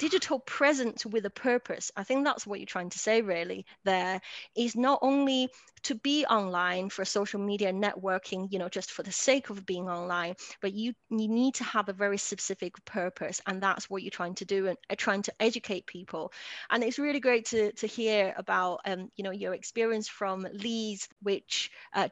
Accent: British